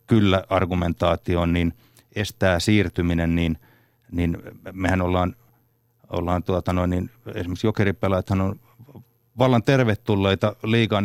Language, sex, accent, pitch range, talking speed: Finnish, male, native, 90-110 Hz, 110 wpm